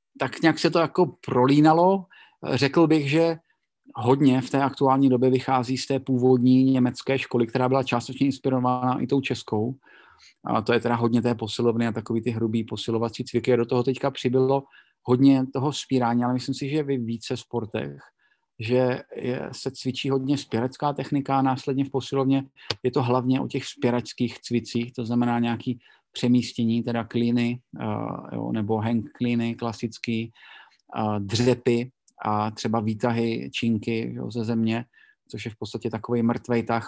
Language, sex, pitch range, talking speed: Slovak, male, 120-135 Hz, 165 wpm